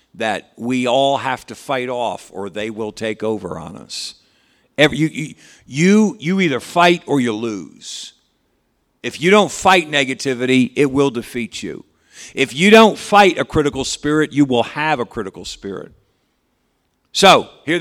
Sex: male